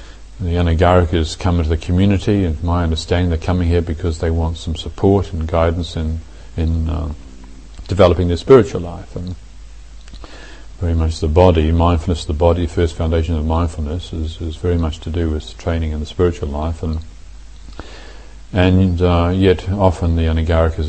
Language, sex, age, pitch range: English, male, 50-69, 80-90 Hz